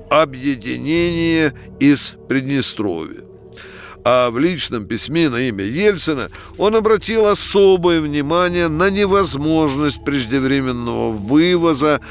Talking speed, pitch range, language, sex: 90 wpm, 115-170 Hz, Russian, male